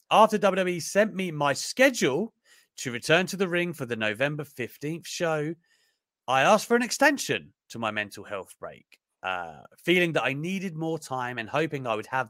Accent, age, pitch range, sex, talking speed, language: British, 30-49, 125-200 Hz, male, 185 wpm, English